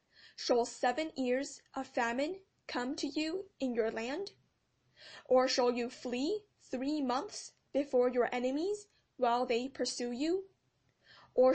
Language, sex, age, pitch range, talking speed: English, female, 10-29, 245-275 Hz, 130 wpm